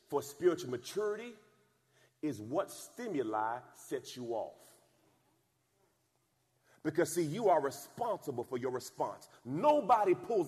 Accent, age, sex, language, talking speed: American, 40-59, male, English, 110 wpm